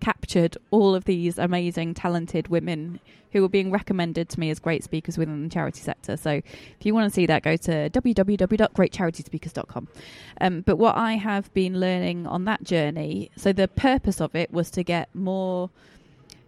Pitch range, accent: 160-190 Hz, British